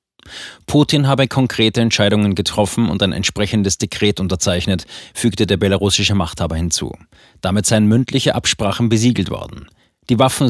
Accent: German